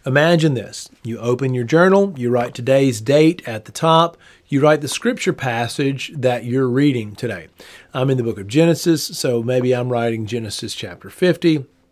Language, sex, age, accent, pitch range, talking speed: English, male, 40-59, American, 120-155 Hz, 175 wpm